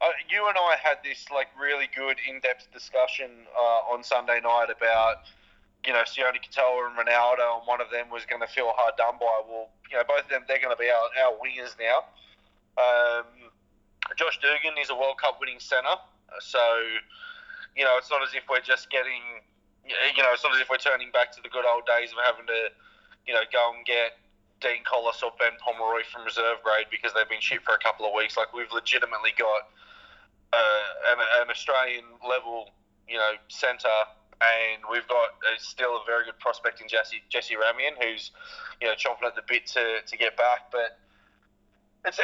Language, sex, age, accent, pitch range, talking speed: English, male, 20-39, Australian, 115-165 Hz, 200 wpm